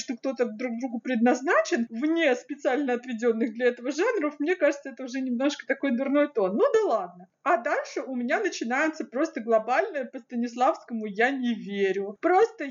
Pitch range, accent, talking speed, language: 245-320 Hz, native, 160 wpm, Russian